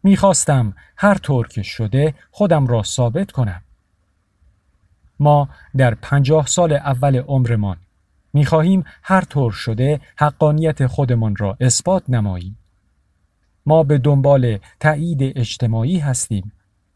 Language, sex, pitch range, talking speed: Persian, male, 100-145 Hz, 105 wpm